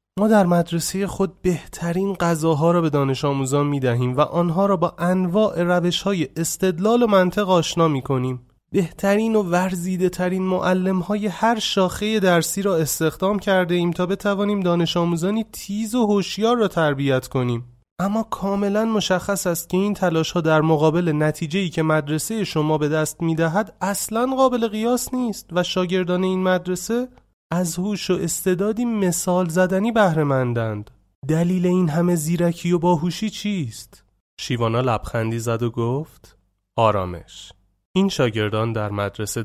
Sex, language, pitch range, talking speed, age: male, Persian, 120-190 Hz, 145 wpm, 30-49